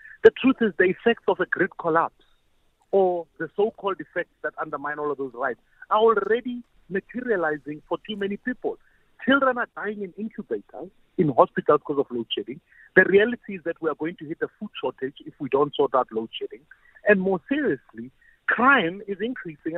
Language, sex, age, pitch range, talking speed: English, male, 50-69, 150-215 Hz, 190 wpm